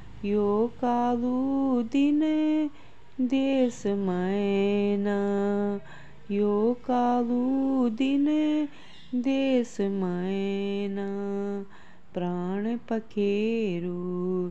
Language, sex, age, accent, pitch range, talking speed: Hindi, female, 20-39, native, 195-270 Hz, 55 wpm